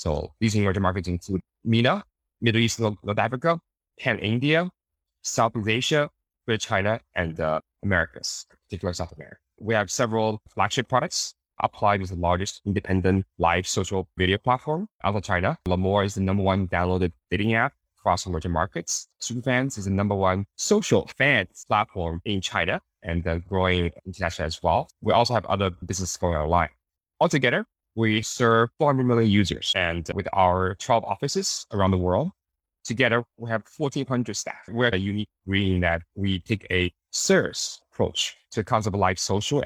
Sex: male